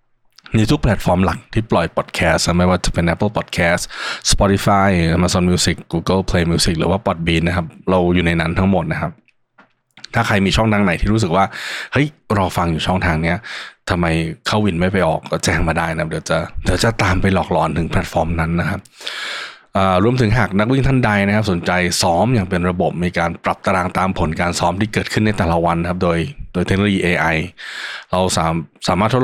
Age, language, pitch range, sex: 20-39, Thai, 85-105 Hz, male